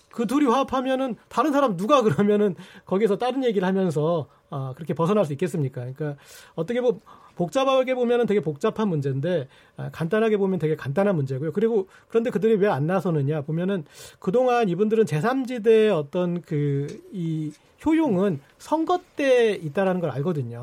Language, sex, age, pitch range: Korean, male, 40-59, 160-235 Hz